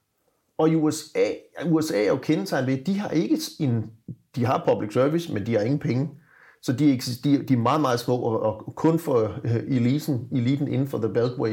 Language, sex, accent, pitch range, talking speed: Danish, male, native, 120-160 Hz, 200 wpm